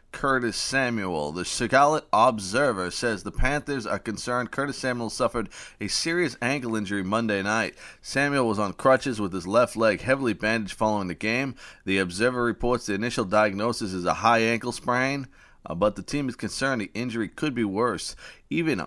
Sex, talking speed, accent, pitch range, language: male, 170 wpm, American, 95-120 Hz, English